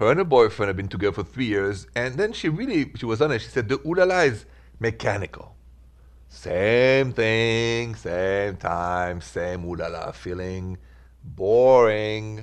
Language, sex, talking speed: English, male, 150 wpm